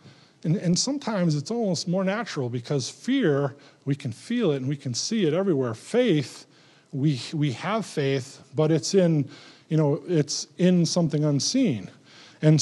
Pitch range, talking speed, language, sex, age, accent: 130-165 Hz, 160 wpm, English, male, 50-69, American